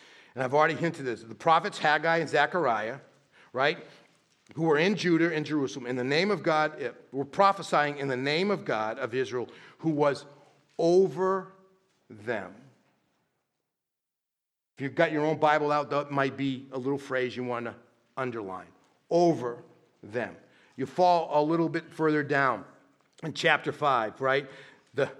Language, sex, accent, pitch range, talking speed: English, male, American, 135-170 Hz, 155 wpm